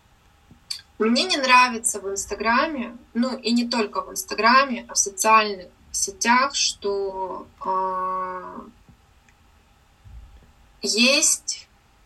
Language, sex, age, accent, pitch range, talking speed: Russian, female, 20-39, native, 190-235 Hz, 90 wpm